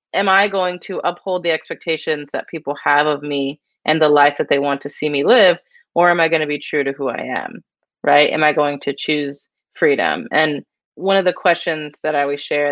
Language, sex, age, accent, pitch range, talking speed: English, female, 20-39, American, 155-215 Hz, 230 wpm